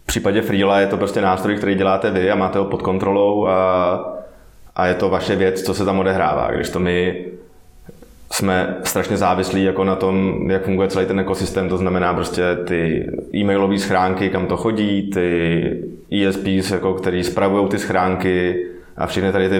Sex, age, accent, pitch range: male, 20-39, native, 90-95 Hz